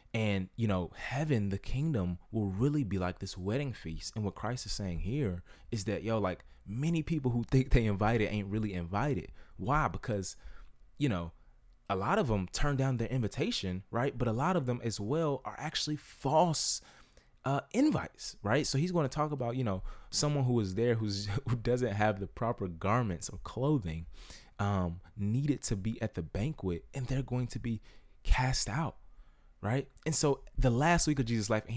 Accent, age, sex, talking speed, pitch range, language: American, 20-39, male, 195 wpm, 100-145 Hz, English